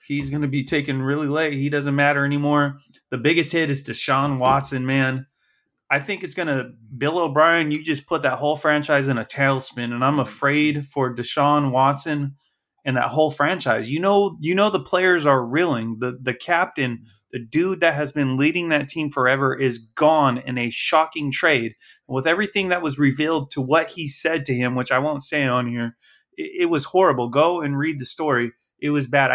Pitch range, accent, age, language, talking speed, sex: 130-160 Hz, American, 20-39, English, 200 wpm, male